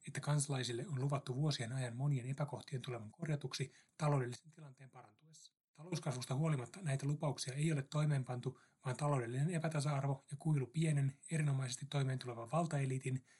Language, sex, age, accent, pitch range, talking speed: Finnish, male, 30-49, native, 130-150 Hz, 130 wpm